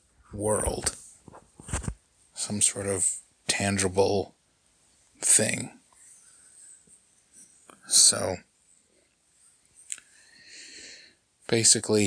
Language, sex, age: English, male, 30-49